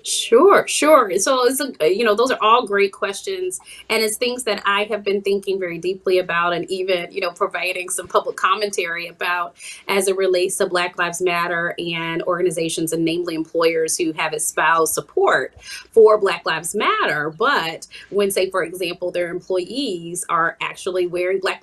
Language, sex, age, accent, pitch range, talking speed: English, female, 30-49, American, 175-235 Hz, 175 wpm